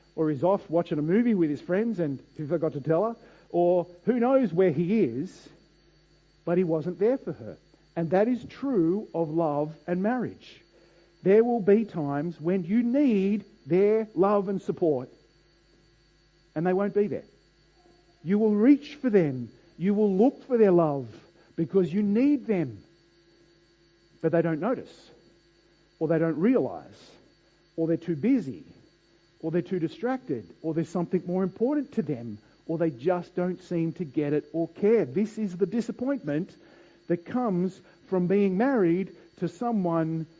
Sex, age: male, 50-69